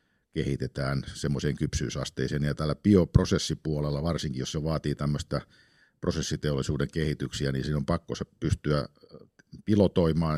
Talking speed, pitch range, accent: 105 wpm, 70-80 Hz, native